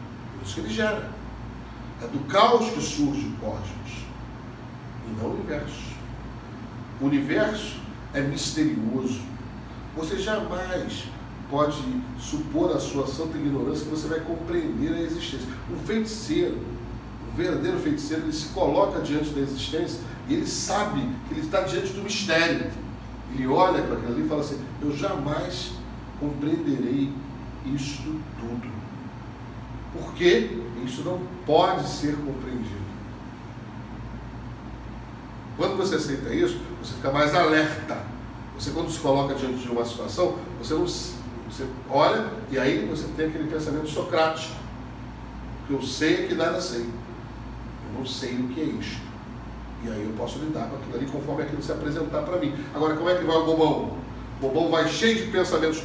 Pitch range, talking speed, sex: 120-160 Hz, 150 wpm, male